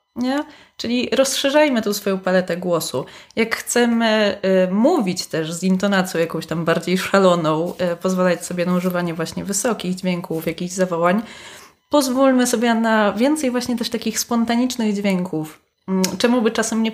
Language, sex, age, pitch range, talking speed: Polish, female, 20-39, 180-230 Hz, 135 wpm